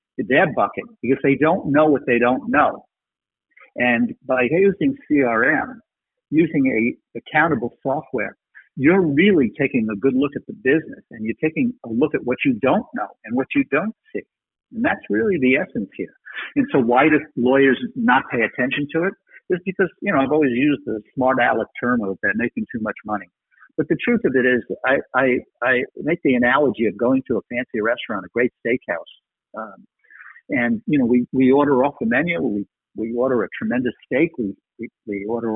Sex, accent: male, American